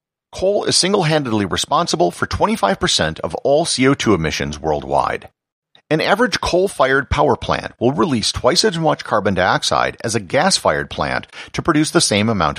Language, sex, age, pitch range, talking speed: English, male, 50-69, 95-150 Hz, 155 wpm